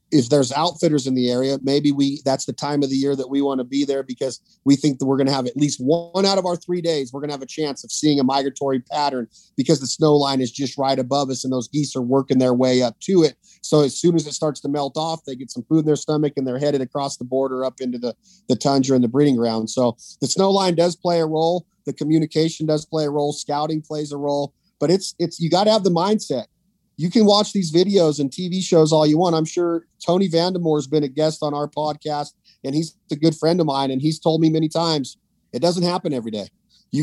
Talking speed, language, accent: 265 wpm, English, American